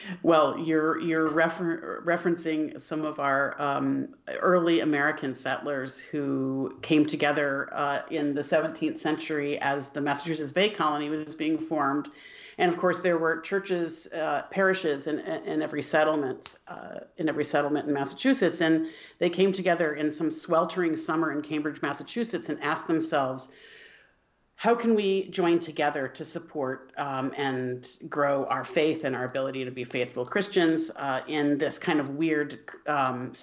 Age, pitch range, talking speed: 50-69, 145-170 Hz, 160 wpm